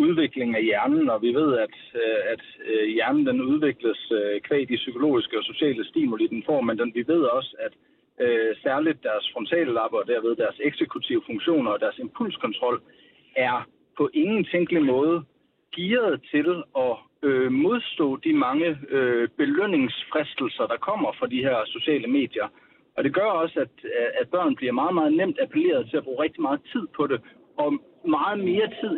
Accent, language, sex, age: native, Danish, male, 60-79